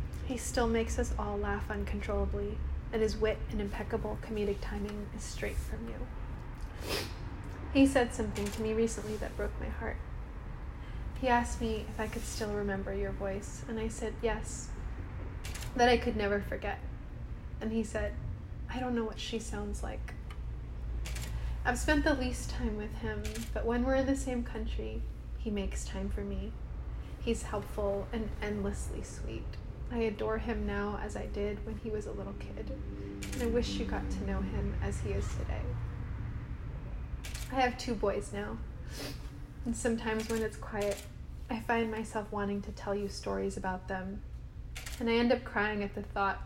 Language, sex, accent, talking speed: English, female, American, 175 wpm